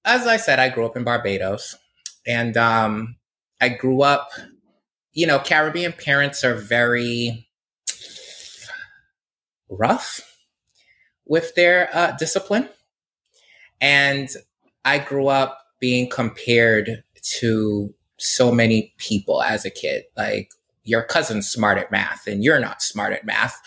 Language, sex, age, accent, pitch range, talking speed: English, male, 20-39, American, 115-140 Hz, 125 wpm